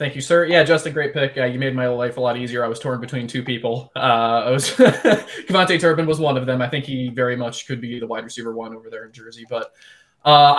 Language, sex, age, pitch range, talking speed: English, male, 20-39, 120-140 Hz, 255 wpm